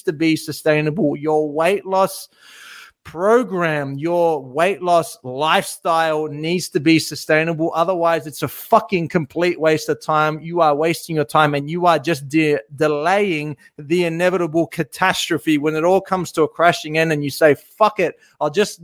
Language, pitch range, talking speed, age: English, 155-185 Hz, 160 wpm, 30-49